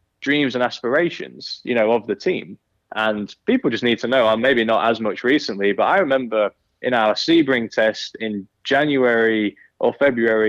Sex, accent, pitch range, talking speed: male, British, 105-120 Hz, 175 wpm